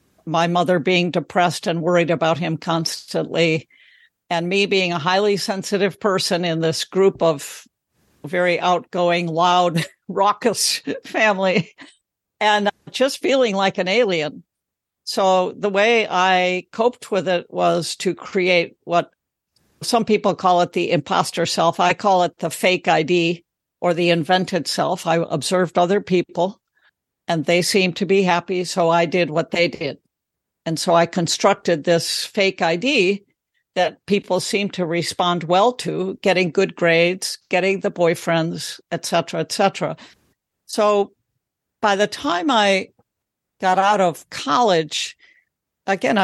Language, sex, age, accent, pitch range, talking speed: English, female, 60-79, American, 170-200 Hz, 140 wpm